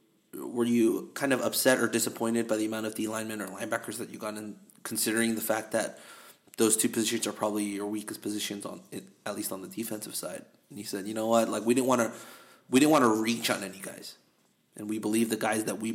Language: English